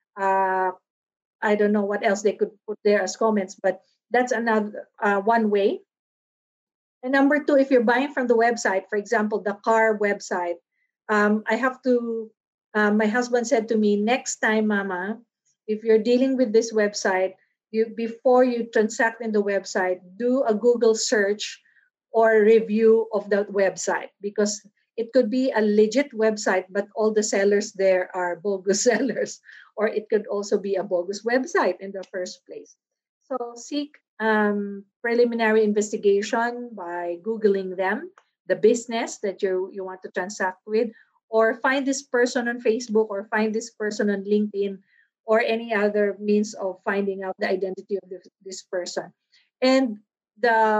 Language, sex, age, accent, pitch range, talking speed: English, female, 50-69, Filipino, 200-235 Hz, 165 wpm